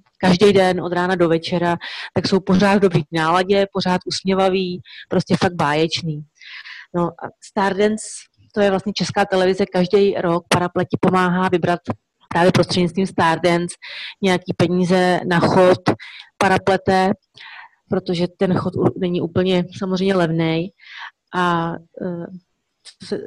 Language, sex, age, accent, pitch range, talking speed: English, female, 30-49, Czech, 175-195 Hz, 120 wpm